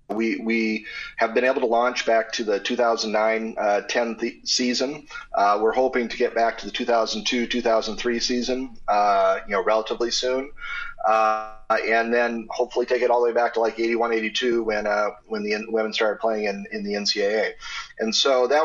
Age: 30-49